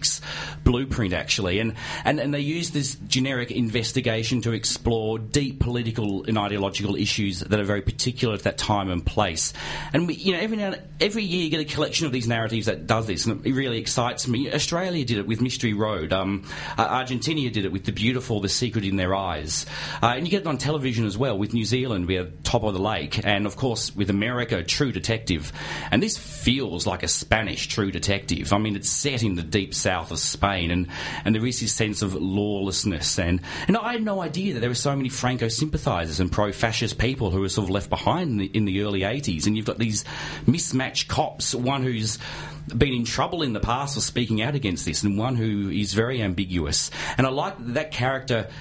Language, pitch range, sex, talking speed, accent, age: English, 100-130 Hz, male, 215 wpm, Australian, 40-59